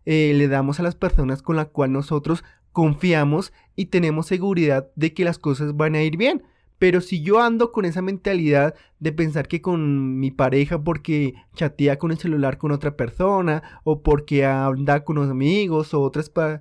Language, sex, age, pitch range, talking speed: Spanish, male, 30-49, 145-180 Hz, 185 wpm